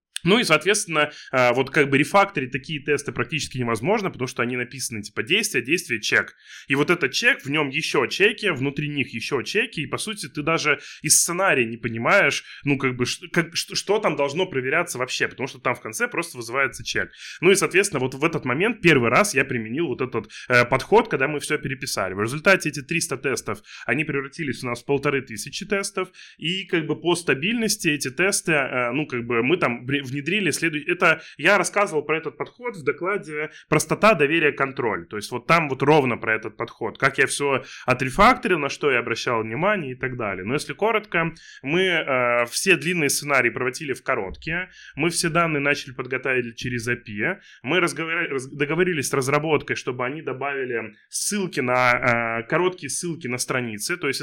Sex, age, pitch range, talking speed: male, 20-39, 130-170 Hz, 190 wpm